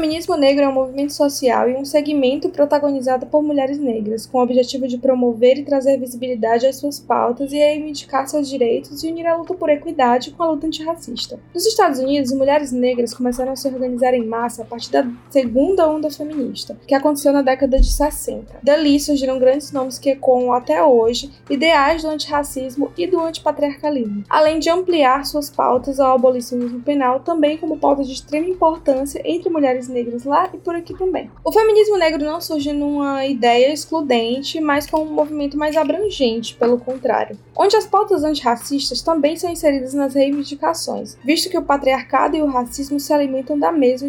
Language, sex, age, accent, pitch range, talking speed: Portuguese, female, 10-29, Brazilian, 255-305 Hz, 180 wpm